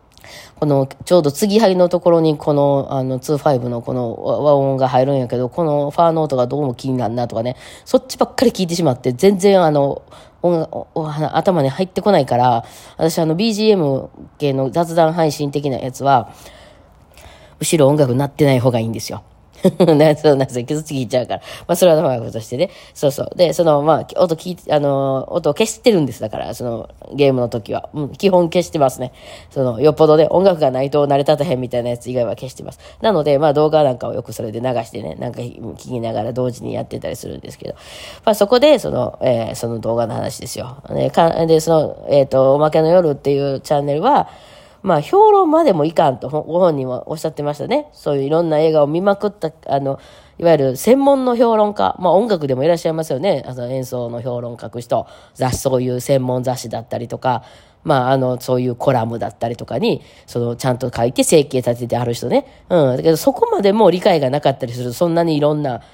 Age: 20-39